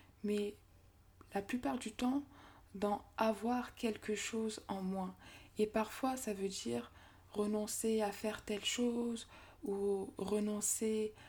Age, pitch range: 20-39, 195-225 Hz